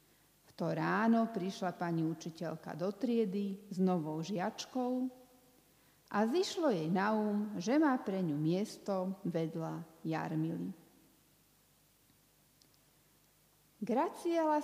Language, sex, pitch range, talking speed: Slovak, female, 165-225 Hz, 95 wpm